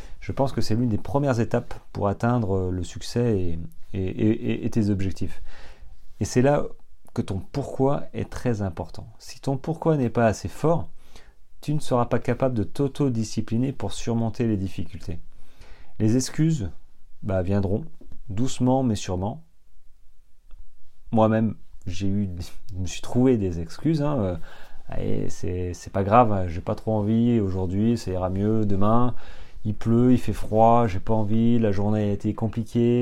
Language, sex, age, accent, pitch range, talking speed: French, male, 30-49, French, 95-125 Hz, 165 wpm